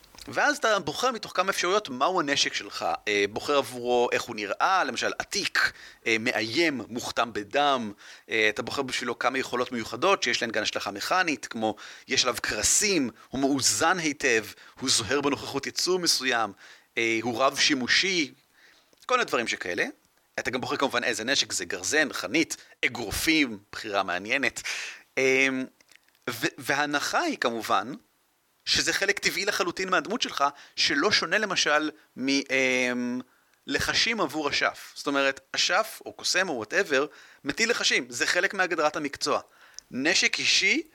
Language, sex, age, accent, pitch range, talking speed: Hebrew, male, 30-49, native, 125-165 Hz, 135 wpm